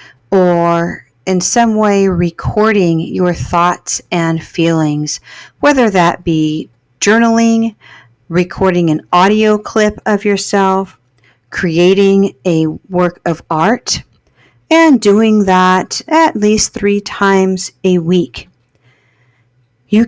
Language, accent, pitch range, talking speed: English, American, 175-220 Hz, 100 wpm